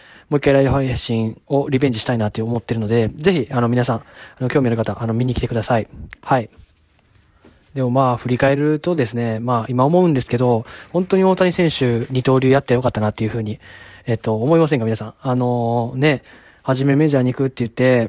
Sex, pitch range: male, 115-140 Hz